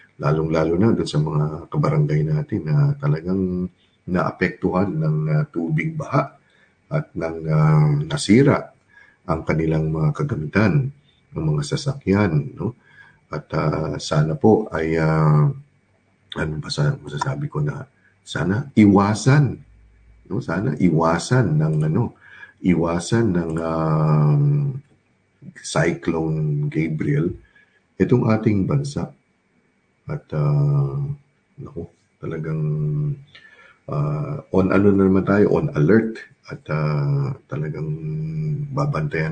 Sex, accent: male, native